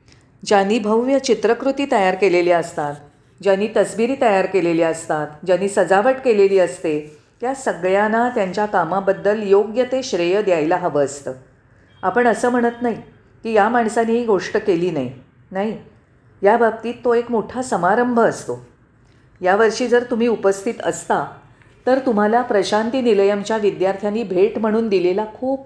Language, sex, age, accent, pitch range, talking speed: Marathi, female, 40-59, native, 170-230 Hz, 135 wpm